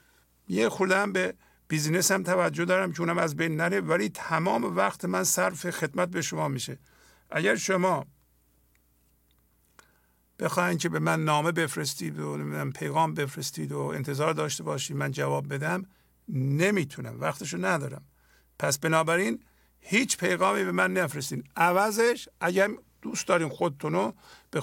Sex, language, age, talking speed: male, English, 50-69, 130 wpm